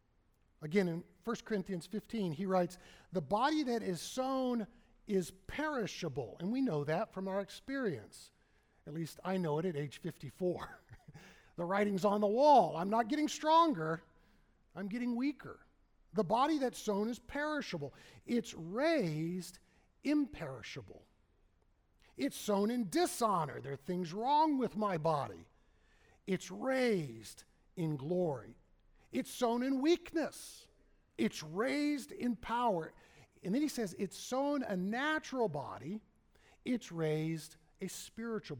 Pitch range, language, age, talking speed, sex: 170-245 Hz, English, 50-69, 135 wpm, male